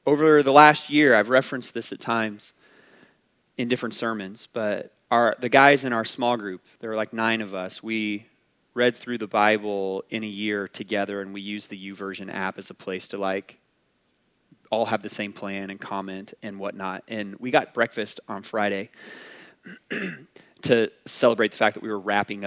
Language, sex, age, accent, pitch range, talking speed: English, male, 20-39, American, 105-140 Hz, 185 wpm